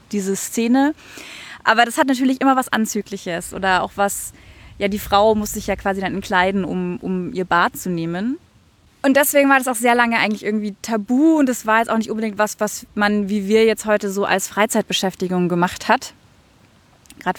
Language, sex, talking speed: German, female, 195 wpm